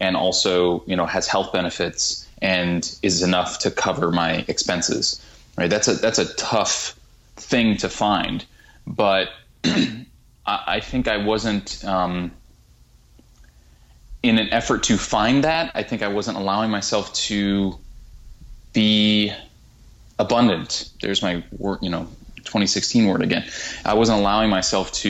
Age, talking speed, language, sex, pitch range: 20-39, 140 wpm, English, male, 90-110 Hz